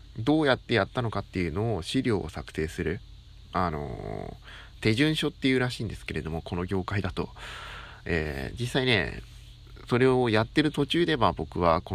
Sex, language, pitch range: male, Japanese, 90-125 Hz